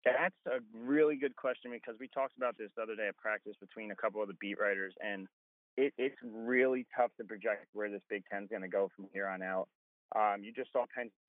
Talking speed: 240 wpm